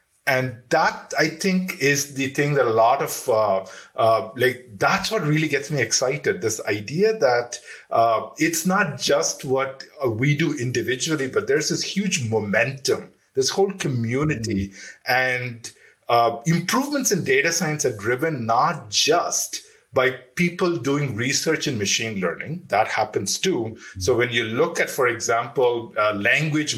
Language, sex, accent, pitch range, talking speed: English, male, Indian, 125-185 Hz, 155 wpm